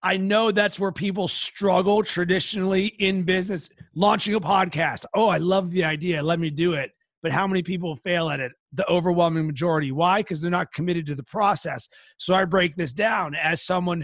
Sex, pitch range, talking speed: male, 175-205 Hz, 195 wpm